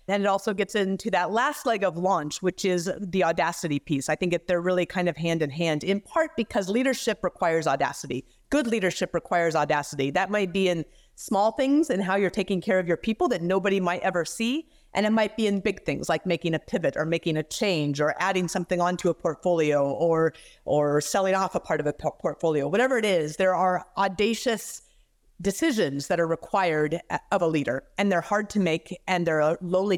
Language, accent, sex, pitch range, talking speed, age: English, American, female, 165-210 Hz, 210 wpm, 30-49